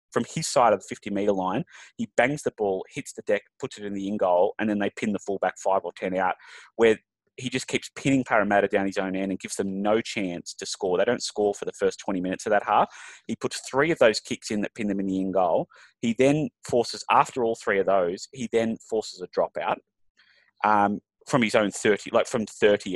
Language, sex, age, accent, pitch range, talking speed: English, male, 20-39, Australian, 100-130 Hz, 245 wpm